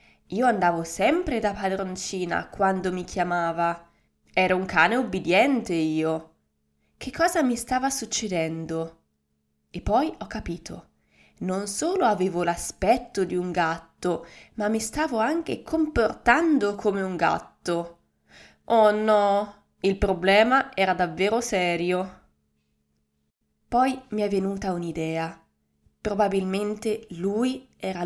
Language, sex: Italian, female